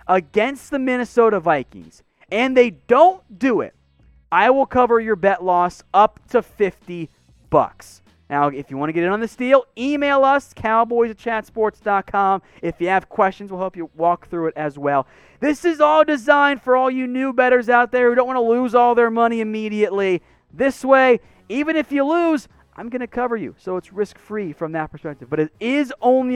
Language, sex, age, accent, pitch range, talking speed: English, male, 30-49, American, 175-255 Hz, 200 wpm